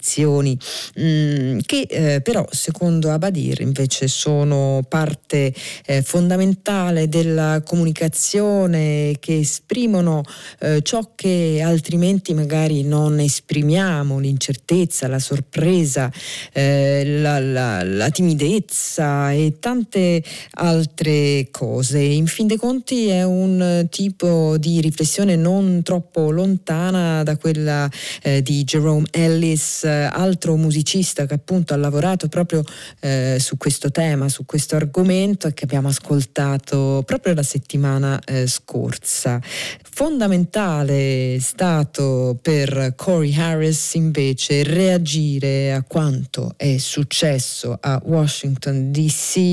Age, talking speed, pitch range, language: 40-59, 105 wpm, 140-170 Hz, Italian